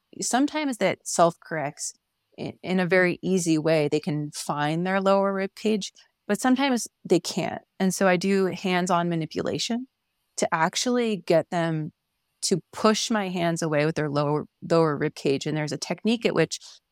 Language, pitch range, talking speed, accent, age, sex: English, 155-195 Hz, 165 wpm, American, 30-49, female